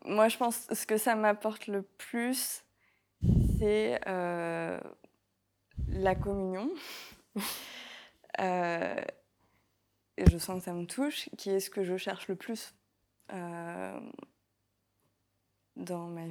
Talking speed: 120 wpm